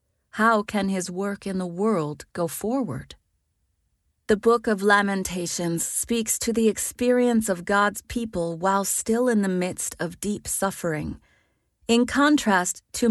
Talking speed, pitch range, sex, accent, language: 140 wpm, 170-220 Hz, female, American, English